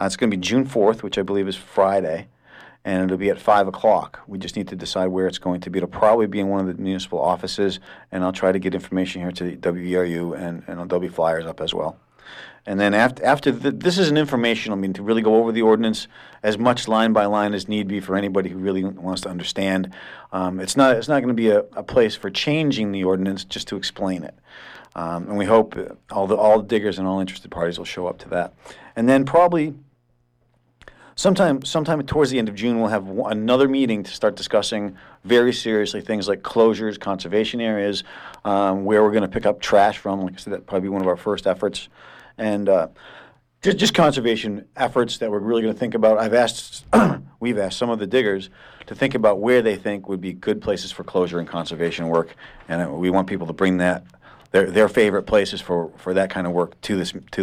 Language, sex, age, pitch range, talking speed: English, male, 40-59, 95-115 Hz, 230 wpm